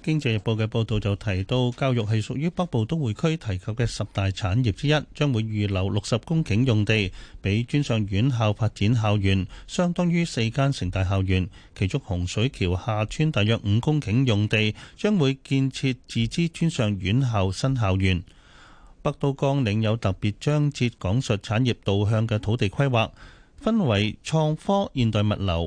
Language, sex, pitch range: Chinese, male, 100-130 Hz